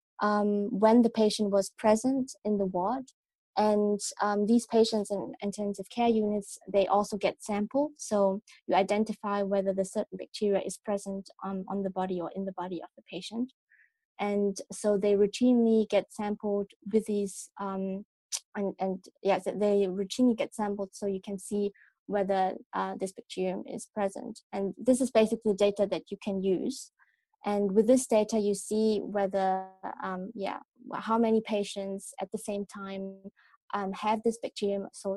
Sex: female